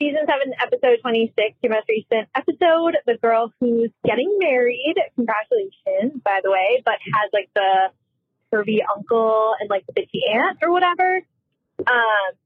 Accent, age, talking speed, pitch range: American, 20-39, 150 wpm, 210-330 Hz